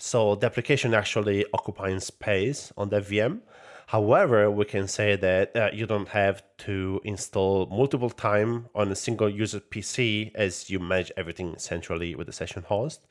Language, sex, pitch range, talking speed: English, male, 95-105 Hz, 165 wpm